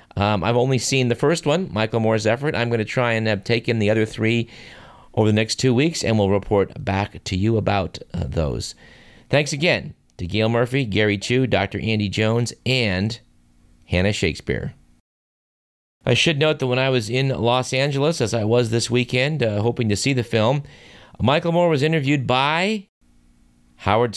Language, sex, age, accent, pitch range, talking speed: English, male, 40-59, American, 100-130 Hz, 185 wpm